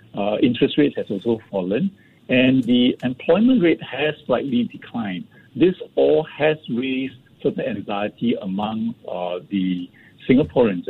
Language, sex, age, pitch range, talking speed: English, male, 60-79, 115-170 Hz, 125 wpm